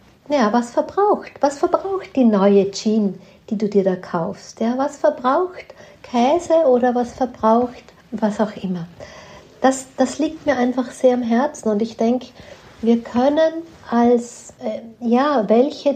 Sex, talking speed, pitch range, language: female, 150 wpm, 210-255 Hz, German